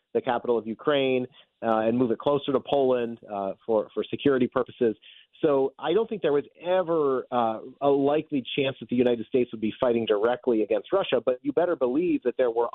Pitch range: 120-150 Hz